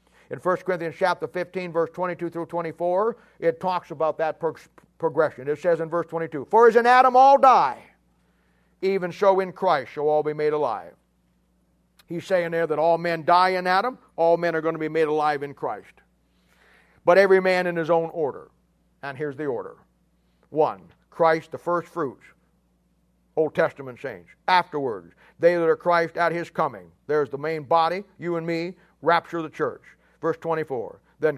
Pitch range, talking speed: 150-190 Hz, 180 wpm